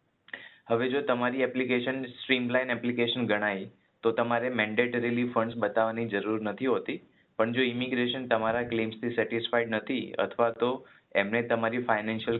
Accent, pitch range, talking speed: native, 105-120 Hz, 130 wpm